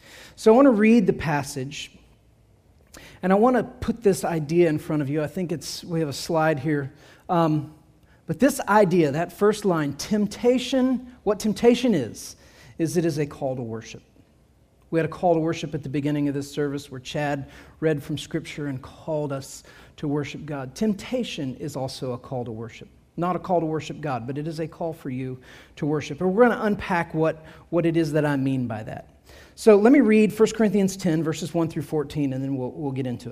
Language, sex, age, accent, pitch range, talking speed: English, male, 40-59, American, 140-190 Hz, 215 wpm